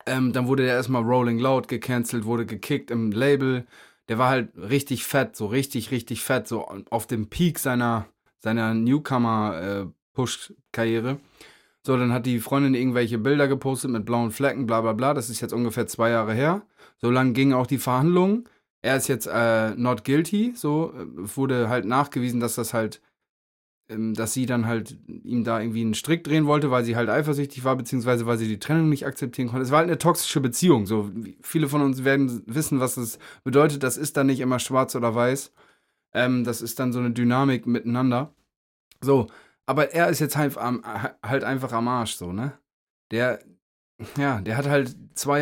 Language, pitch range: German, 115-140 Hz